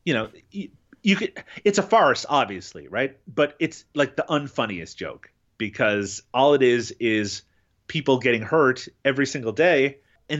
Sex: male